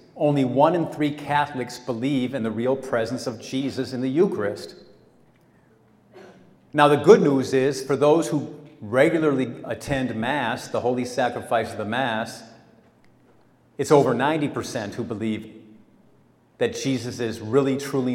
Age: 50-69